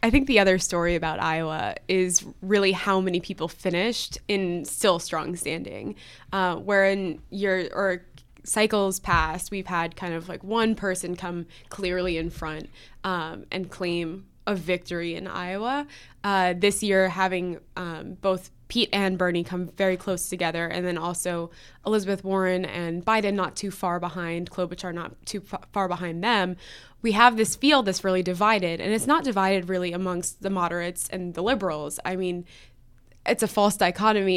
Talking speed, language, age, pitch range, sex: 165 wpm, English, 20-39, 175-215 Hz, female